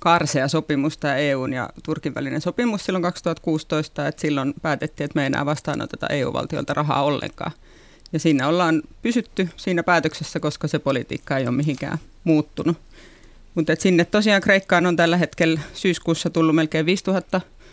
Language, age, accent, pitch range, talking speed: Finnish, 30-49, native, 150-170 Hz, 150 wpm